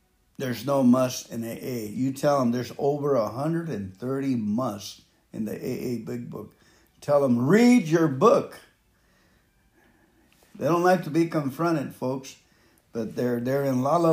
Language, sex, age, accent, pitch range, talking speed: English, male, 60-79, American, 125-160 Hz, 145 wpm